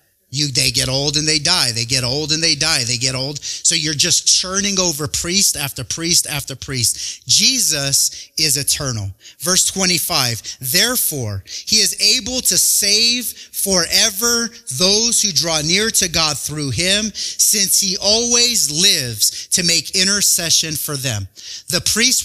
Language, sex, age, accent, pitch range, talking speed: English, male, 30-49, American, 130-185 Hz, 155 wpm